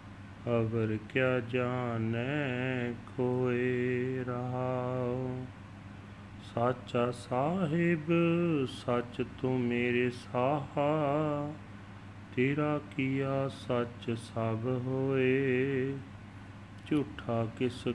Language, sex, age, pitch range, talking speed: Punjabi, male, 30-49, 115-130 Hz, 60 wpm